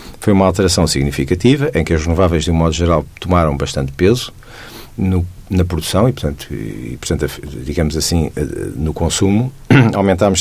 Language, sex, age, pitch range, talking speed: Portuguese, male, 50-69, 85-110 Hz, 145 wpm